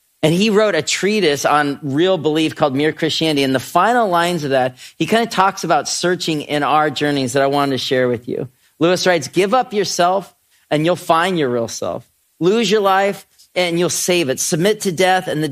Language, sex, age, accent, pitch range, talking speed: English, male, 40-59, American, 130-175 Hz, 215 wpm